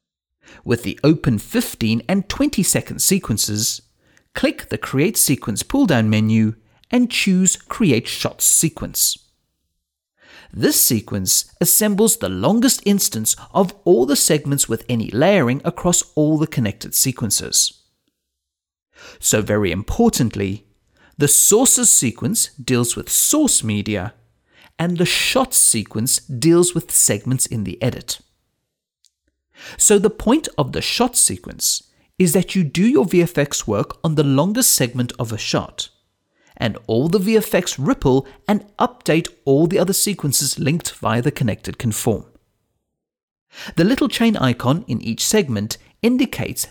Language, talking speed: English, 130 wpm